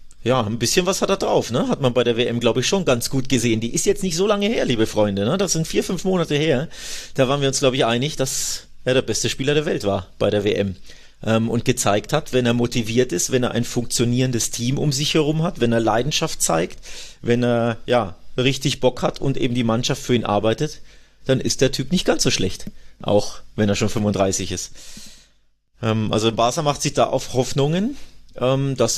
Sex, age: male, 30-49